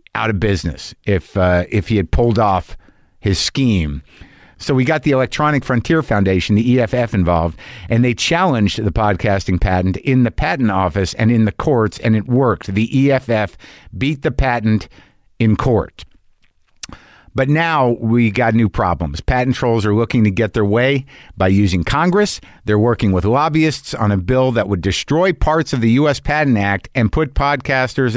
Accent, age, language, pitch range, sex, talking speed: American, 50-69, English, 105-145 Hz, male, 175 wpm